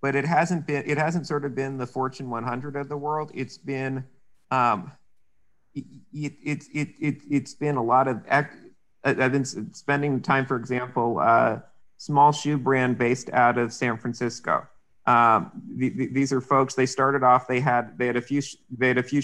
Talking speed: 175 wpm